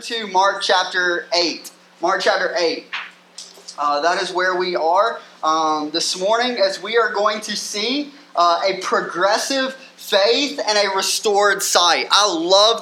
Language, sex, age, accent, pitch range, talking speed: English, male, 20-39, American, 170-200 Hz, 145 wpm